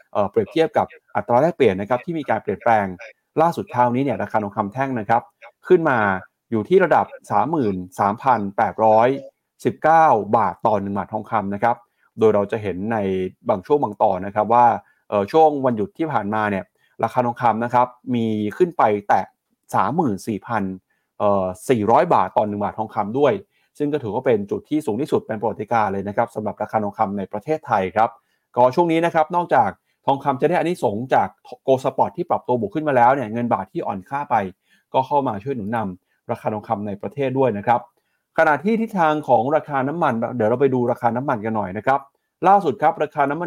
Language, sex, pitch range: Thai, male, 105-150 Hz